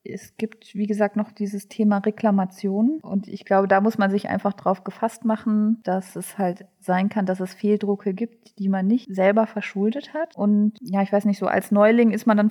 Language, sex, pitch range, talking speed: German, female, 195-220 Hz, 215 wpm